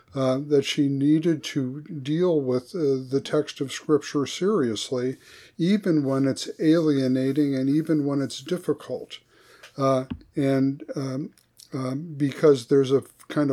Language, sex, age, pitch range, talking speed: English, male, 50-69, 135-155 Hz, 135 wpm